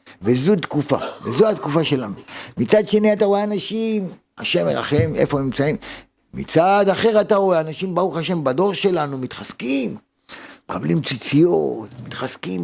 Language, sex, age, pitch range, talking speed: Hebrew, male, 50-69, 140-210 Hz, 135 wpm